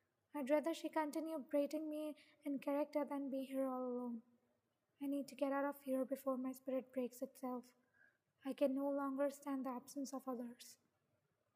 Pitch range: 260-290 Hz